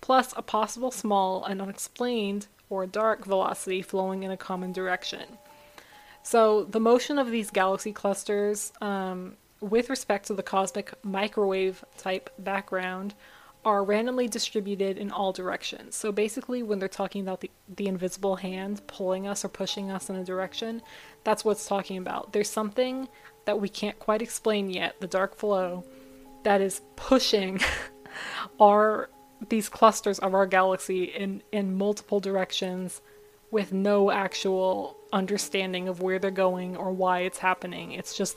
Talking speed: 150 wpm